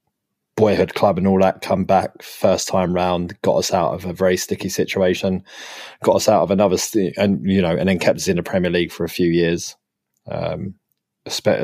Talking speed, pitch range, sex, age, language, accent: 205 wpm, 85-95 Hz, male, 20-39, English, British